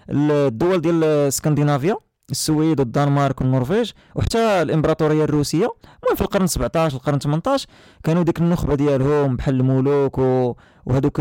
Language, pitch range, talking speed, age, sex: Arabic, 135-170 Hz, 120 wpm, 20-39, male